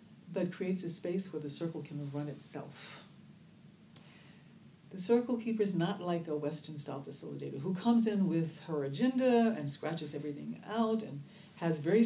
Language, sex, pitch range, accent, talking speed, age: English, female, 150-185 Hz, American, 165 wpm, 60-79